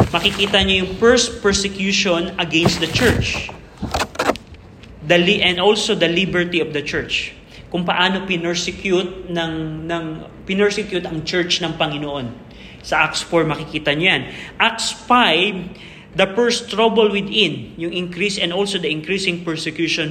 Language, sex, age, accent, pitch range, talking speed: Filipino, male, 20-39, native, 165-200 Hz, 135 wpm